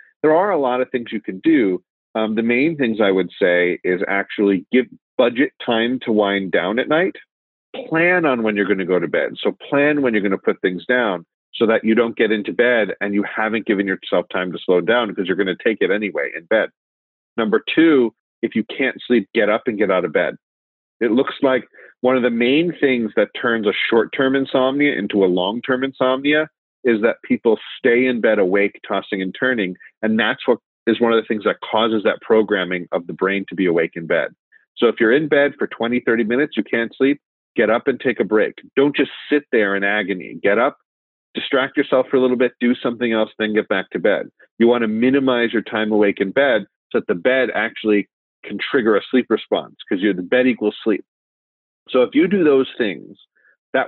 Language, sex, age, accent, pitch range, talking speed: English, male, 40-59, American, 100-130 Hz, 220 wpm